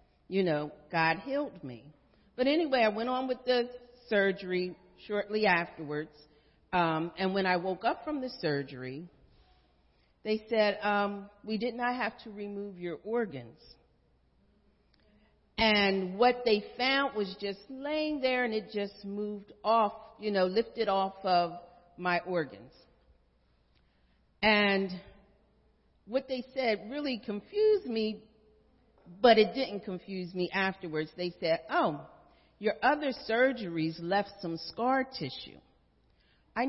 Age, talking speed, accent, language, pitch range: 40-59, 130 wpm, American, English, 165-230 Hz